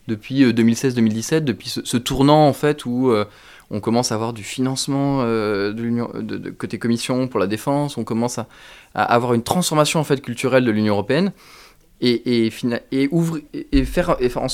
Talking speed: 200 wpm